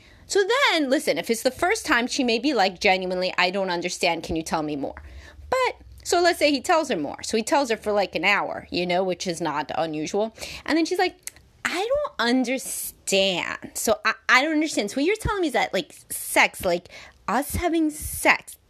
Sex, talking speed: female, 220 wpm